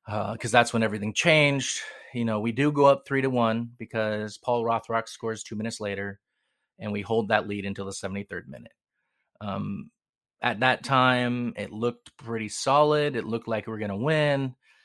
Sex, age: male, 30-49